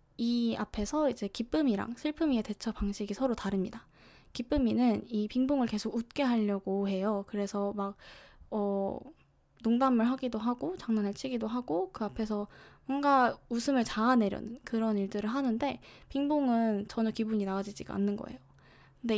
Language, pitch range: Korean, 205-260 Hz